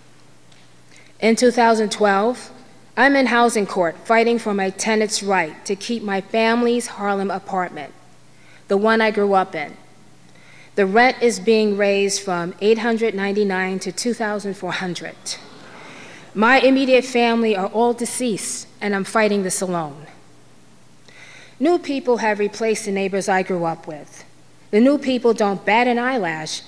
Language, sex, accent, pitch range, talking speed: English, female, American, 180-225 Hz, 135 wpm